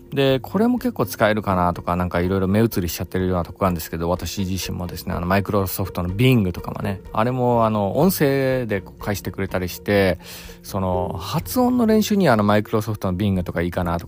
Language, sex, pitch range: Japanese, male, 95-135 Hz